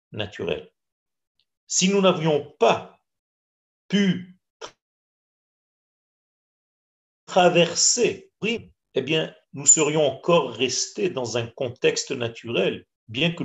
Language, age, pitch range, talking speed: French, 50-69, 120-195 Hz, 85 wpm